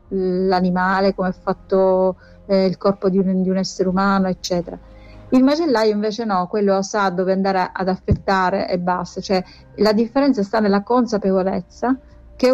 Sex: female